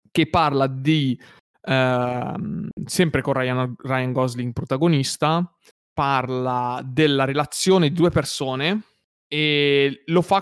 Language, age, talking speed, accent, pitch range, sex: Italian, 20-39, 105 wpm, native, 130-155 Hz, male